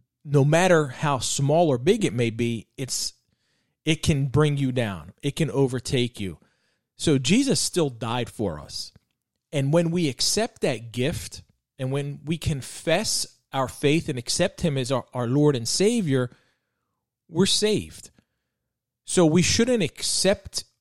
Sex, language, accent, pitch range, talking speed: male, English, American, 120-155 Hz, 150 wpm